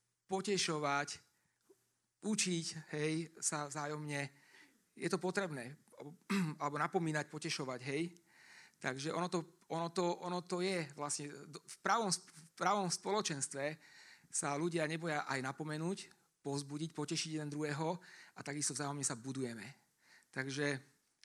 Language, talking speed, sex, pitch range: Slovak, 105 wpm, male, 140-170 Hz